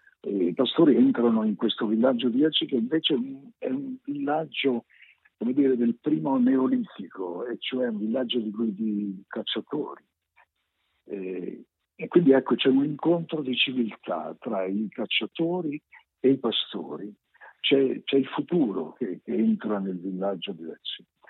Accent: native